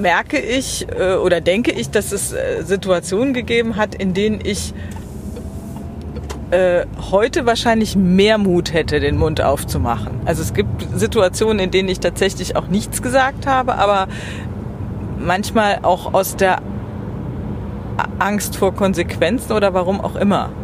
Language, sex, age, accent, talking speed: German, female, 40-59, German, 130 wpm